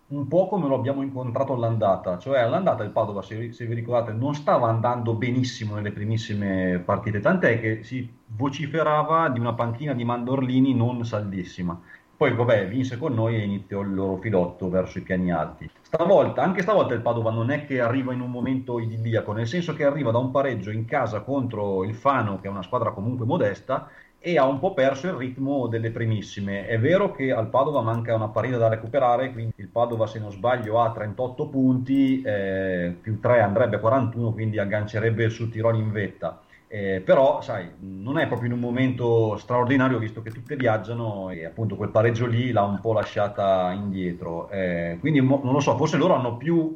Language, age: Italian, 30-49